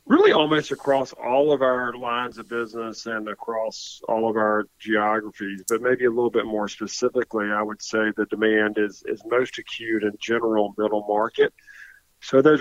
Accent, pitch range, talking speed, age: American, 105-120 Hz, 175 wpm, 40-59